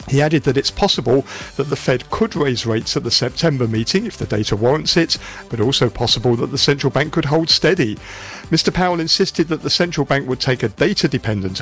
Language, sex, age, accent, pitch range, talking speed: English, male, 50-69, British, 110-155 Hz, 210 wpm